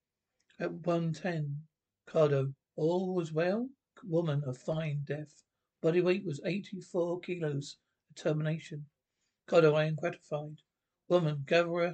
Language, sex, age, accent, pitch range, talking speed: English, male, 60-79, British, 150-175 Hz, 125 wpm